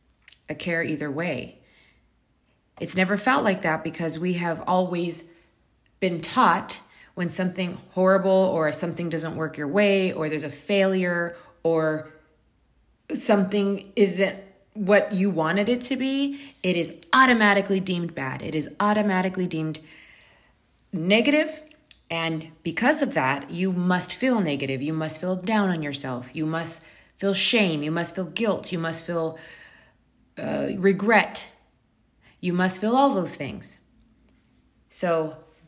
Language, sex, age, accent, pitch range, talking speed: English, female, 30-49, American, 160-195 Hz, 135 wpm